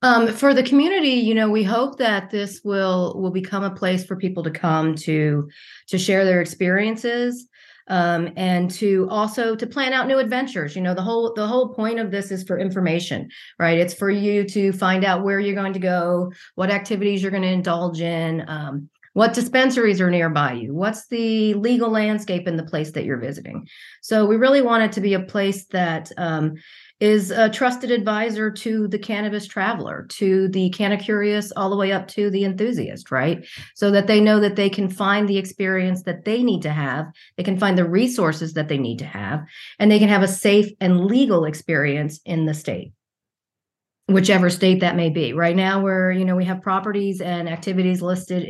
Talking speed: 205 wpm